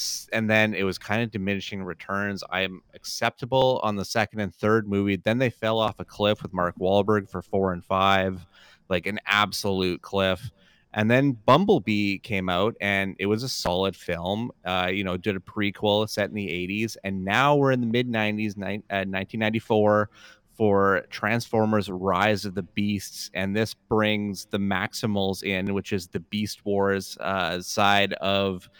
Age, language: 30-49, English